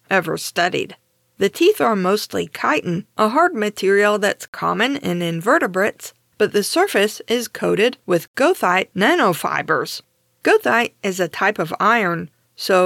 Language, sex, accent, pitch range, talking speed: English, female, American, 185-245 Hz, 135 wpm